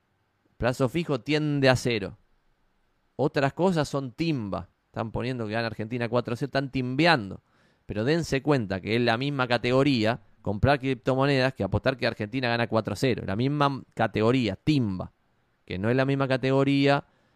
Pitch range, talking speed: 105-135 Hz, 150 wpm